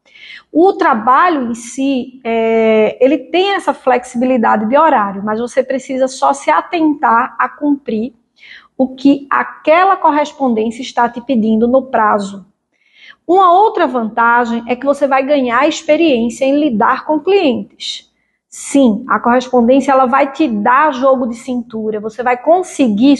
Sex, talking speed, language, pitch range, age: female, 140 wpm, Portuguese, 245-300 Hz, 20-39